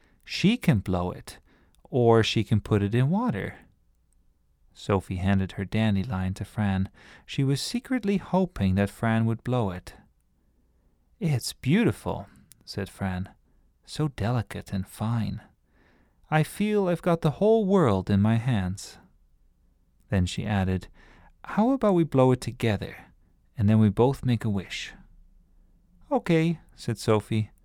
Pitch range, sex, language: 90-135 Hz, male, English